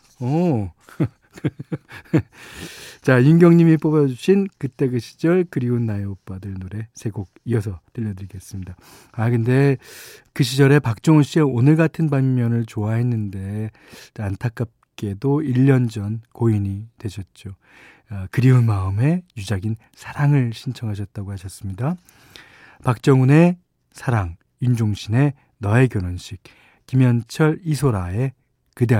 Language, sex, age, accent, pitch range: Korean, male, 40-59, native, 105-140 Hz